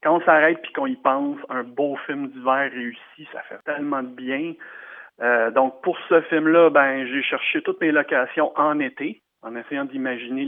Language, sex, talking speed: French, male, 190 wpm